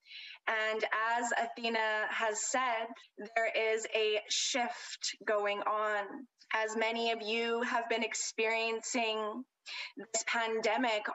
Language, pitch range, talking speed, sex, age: English, 215-235 Hz, 110 wpm, female, 20-39